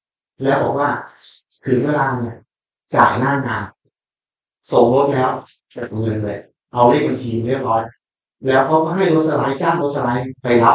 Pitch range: 120-155 Hz